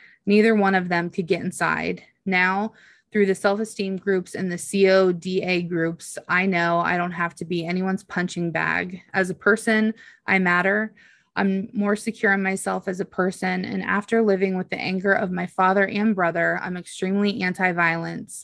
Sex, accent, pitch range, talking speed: female, American, 175-205 Hz, 175 wpm